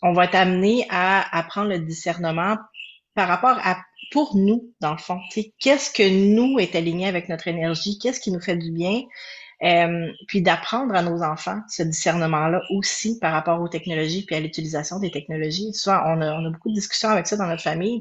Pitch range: 165-200 Hz